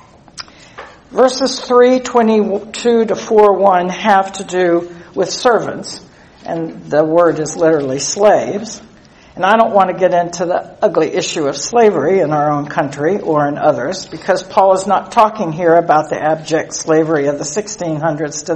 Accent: American